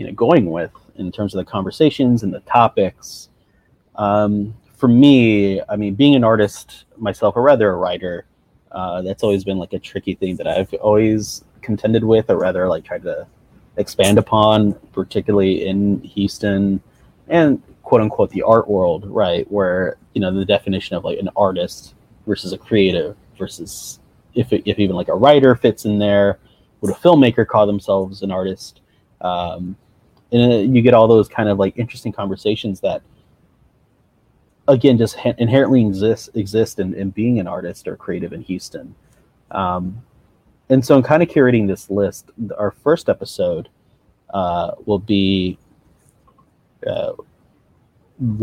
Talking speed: 155 wpm